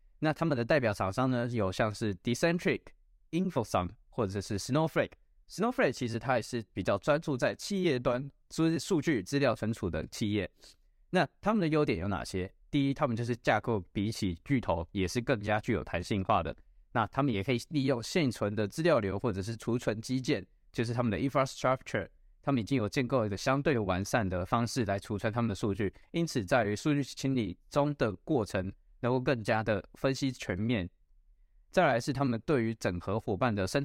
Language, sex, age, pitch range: Chinese, male, 20-39, 105-140 Hz